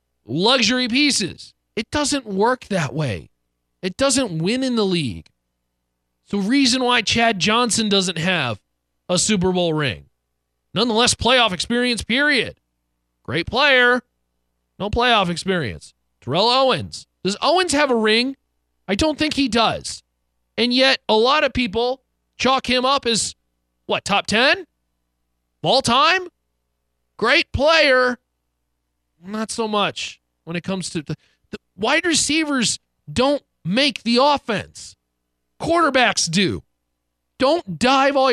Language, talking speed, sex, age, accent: English, 130 wpm, male, 40-59, American